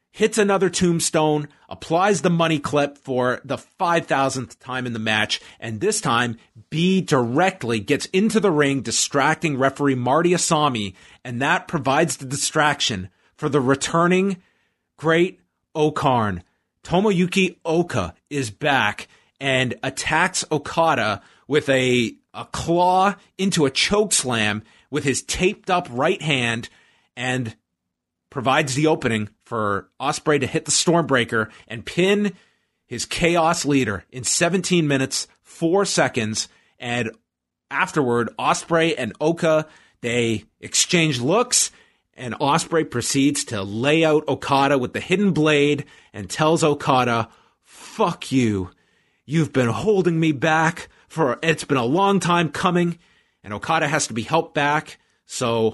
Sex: male